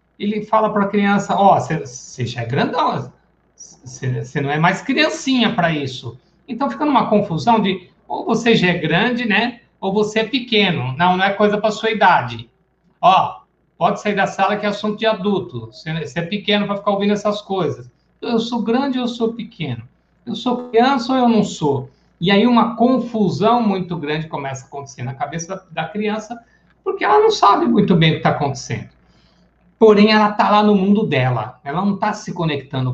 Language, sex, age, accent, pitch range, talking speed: Portuguese, male, 60-79, Brazilian, 140-215 Hz, 195 wpm